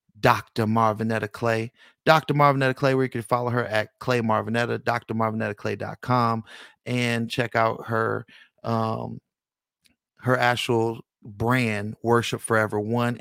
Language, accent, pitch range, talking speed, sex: English, American, 110-125 Hz, 125 wpm, male